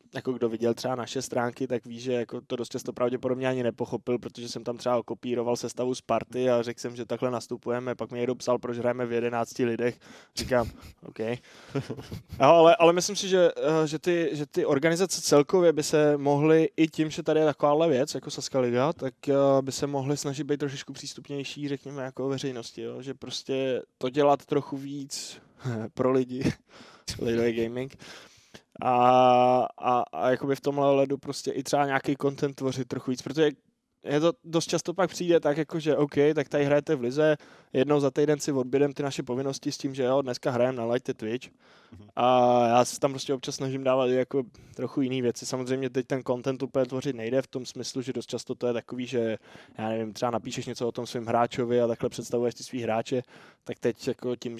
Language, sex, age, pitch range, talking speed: Czech, male, 20-39, 120-145 Hz, 200 wpm